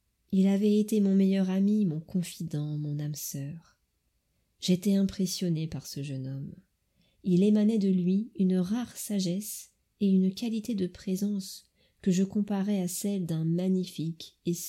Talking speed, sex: 150 wpm, female